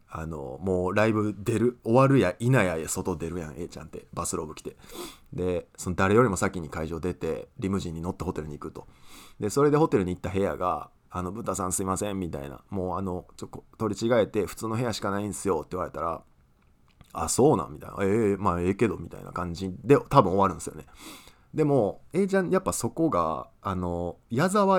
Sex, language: male, Japanese